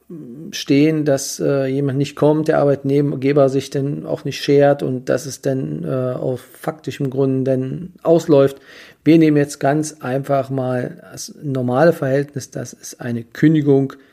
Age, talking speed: 40-59, 150 wpm